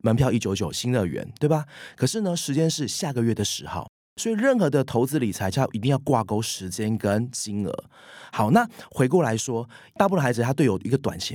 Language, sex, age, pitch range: Chinese, male, 30-49, 105-155 Hz